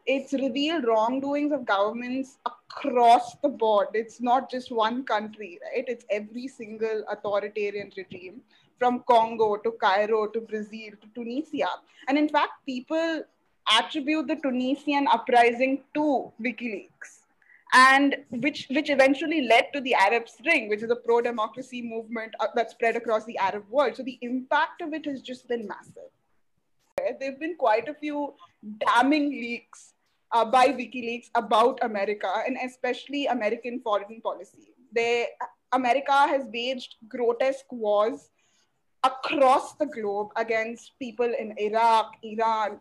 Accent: Indian